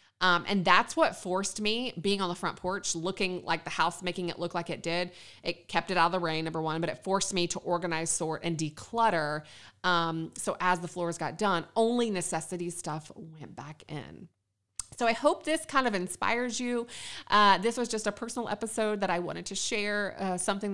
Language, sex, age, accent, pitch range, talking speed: English, female, 30-49, American, 165-210 Hz, 215 wpm